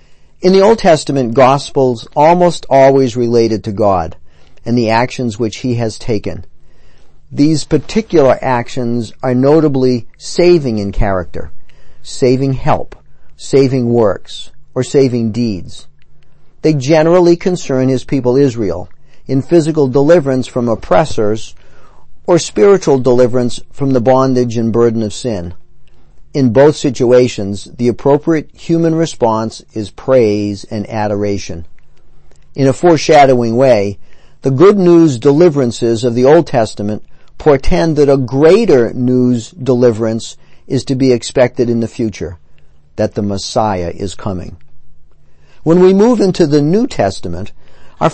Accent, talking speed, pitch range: American, 125 wpm, 100-140 Hz